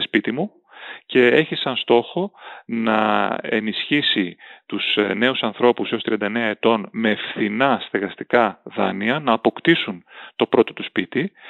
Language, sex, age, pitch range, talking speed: Greek, male, 30-49, 110-135 Hz, 125 wpm